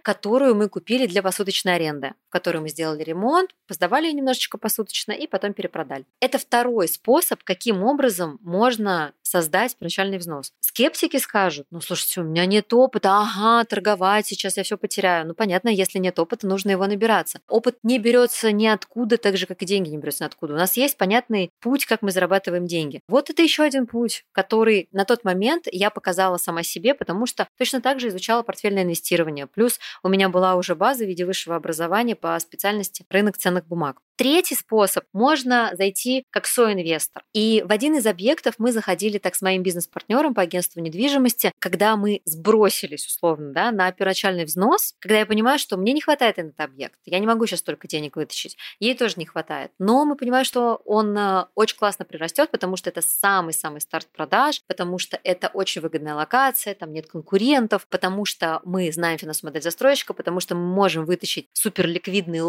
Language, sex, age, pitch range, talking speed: Russian, female, 20-39, 175-230 Hz, 180 wpm